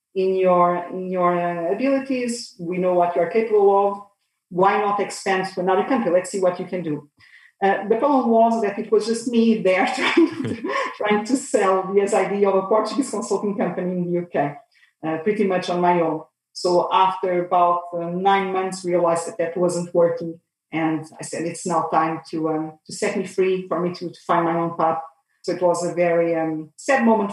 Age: 40-59